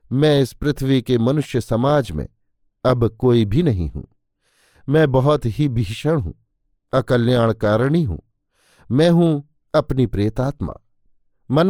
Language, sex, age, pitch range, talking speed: Hindi, male, 50-69, 110-145 Hz, 130 wpm